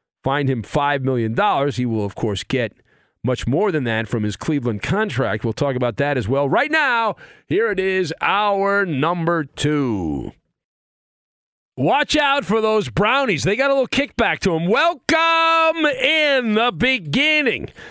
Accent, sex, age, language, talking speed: American, male, 40-59, English, 160 wpm